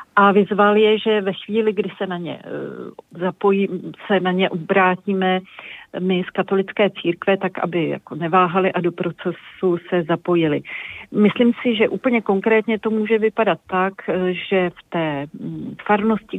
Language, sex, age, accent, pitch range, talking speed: Czech, female, 40-59, native, 175-205 Hz, 150 wpm